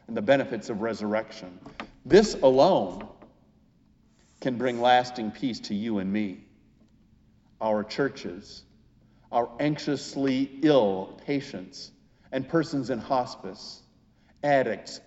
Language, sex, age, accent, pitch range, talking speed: English, male, 50-69, American, 120-190 Hz, 100 wpm